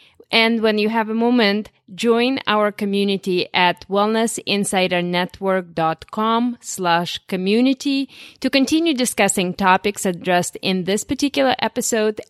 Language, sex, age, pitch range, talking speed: English, female, 30-49, 180-225 Hz, 105 wpm